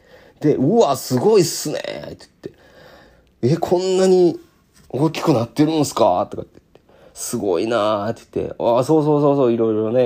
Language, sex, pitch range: Japanese, male, 90-120 Hz